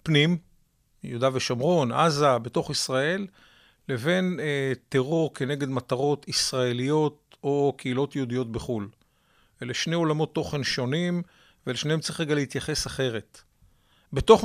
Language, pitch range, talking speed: Hebrew, 125-160 Hz, 110 wpm